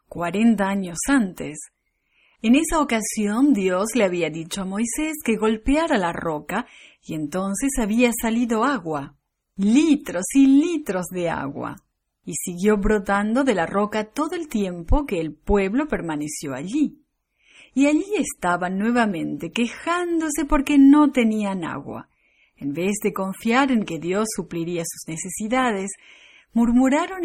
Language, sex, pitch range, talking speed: English, female, 190-275 Hz, 130 wpm